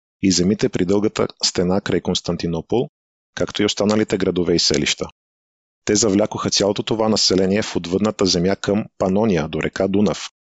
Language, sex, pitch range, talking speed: Bulgarian, male, 90-105 Hz, 150 wpm